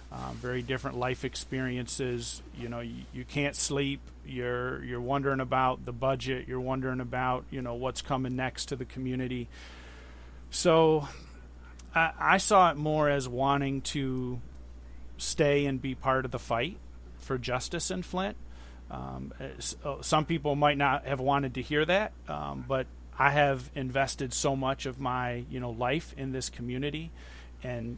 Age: 40-59